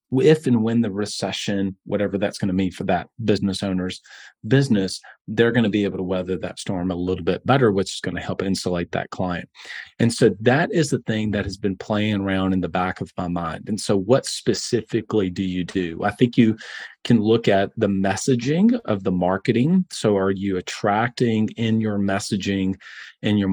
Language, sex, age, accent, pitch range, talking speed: English, male, 30-49, American, 95-115 Hz, 205 wpm